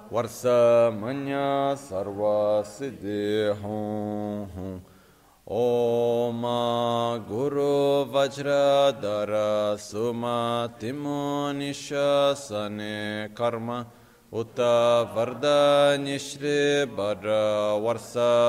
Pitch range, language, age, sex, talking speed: 105-140 Hz, Italian, 30-49, male, 50 wpm